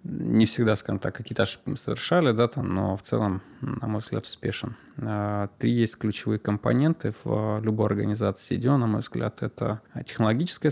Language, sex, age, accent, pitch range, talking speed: Russian, male, 20-39, native, 105-125 Hz, 175 wpm